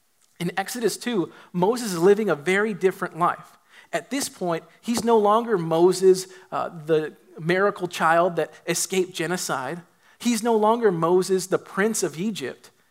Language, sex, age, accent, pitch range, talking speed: English, male, 40-59, American, 160-210 Hz, 150 wpm